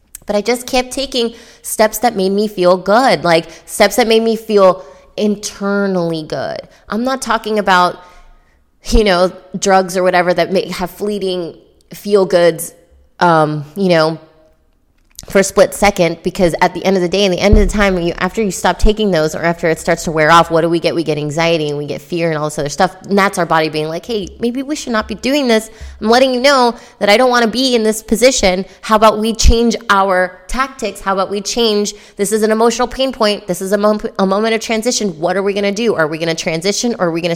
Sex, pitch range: female, 165-210 Hz